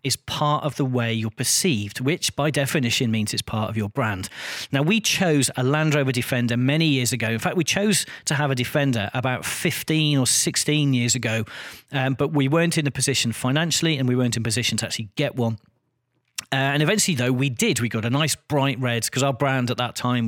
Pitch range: 120-150 Hz